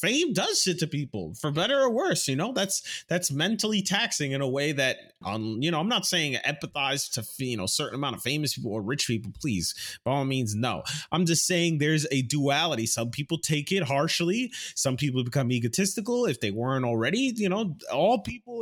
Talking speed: 210 wpm